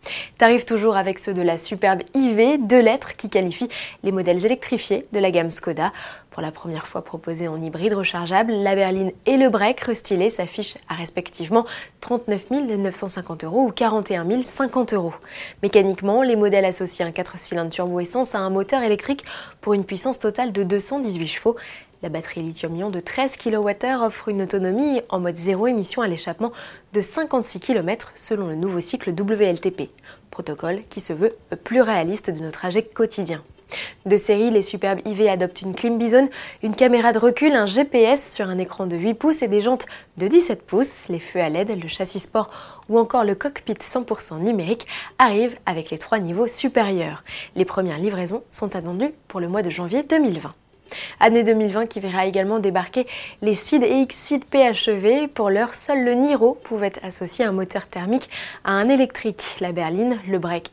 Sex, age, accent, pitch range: female, 20-39, French, 185-235 Hz